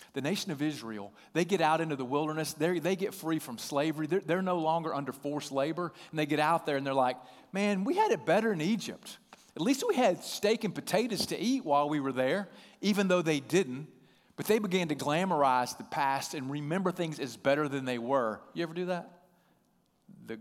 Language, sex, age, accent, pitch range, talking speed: English, male, 40-59, American, 125-165 Hz, 220 wpm